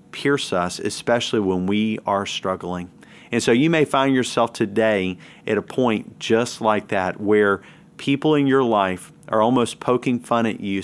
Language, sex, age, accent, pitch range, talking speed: English, male, 40-59, American, 100-120 Hz, 170 wpm